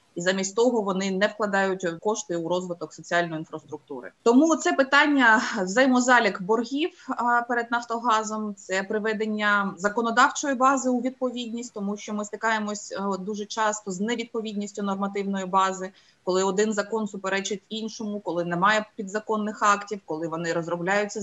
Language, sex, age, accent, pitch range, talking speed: Ukrainian, female, 20-39, native, 200-250 Hz, 130 wpm